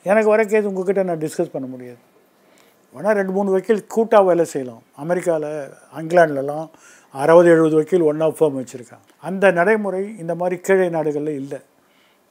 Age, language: 50-69, Tamil